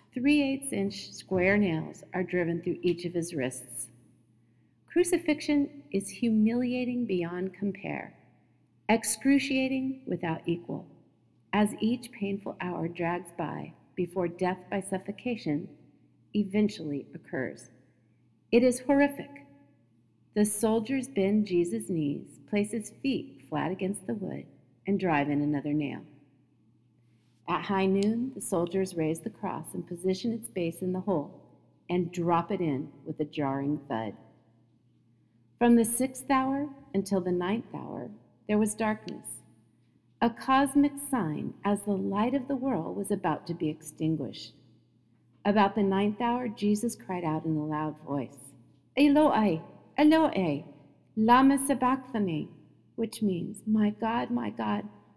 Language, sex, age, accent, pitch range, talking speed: English, female, 50-69, American, 150-230 Hz, 130 wpm